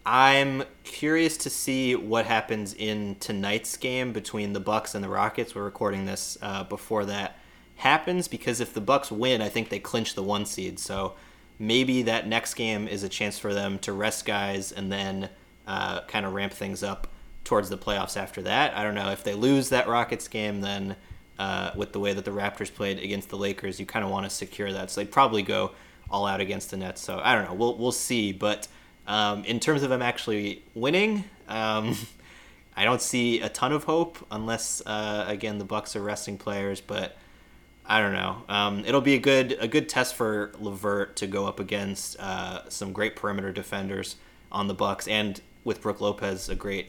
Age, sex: 20-39, male